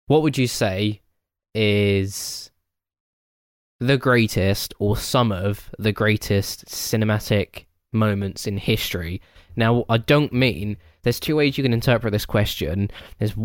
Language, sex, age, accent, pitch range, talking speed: English, male, 10-29, British, 100-115 Hz, 130 wpm